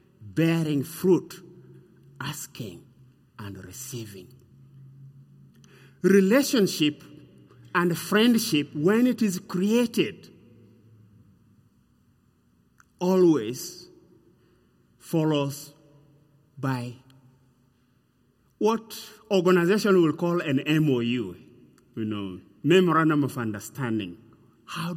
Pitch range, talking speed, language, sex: 135-205 Hz, 65 wpm, English, male